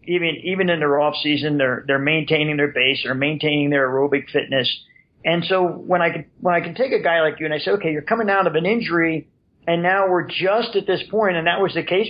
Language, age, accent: English, 40-59, American